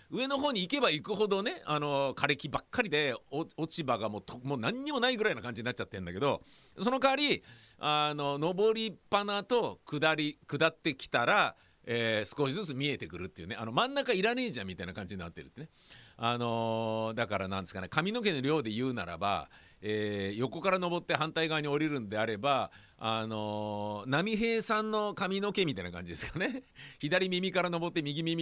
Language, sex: Japanese, male